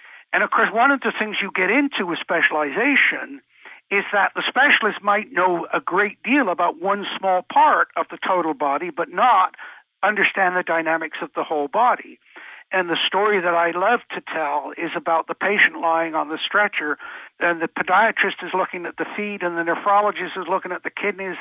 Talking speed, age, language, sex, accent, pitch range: 195 wpm, 60-79, English, male, American, 175-225 Hz